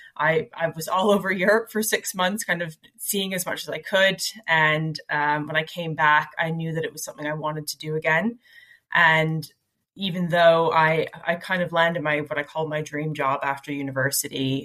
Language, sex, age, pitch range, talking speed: English, female, 20-39, 145-170 Hz, 210 wpm